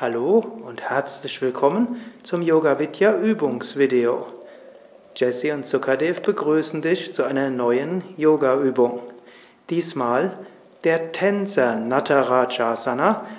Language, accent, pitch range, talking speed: German, German, 130-200 Hz, 85 wpm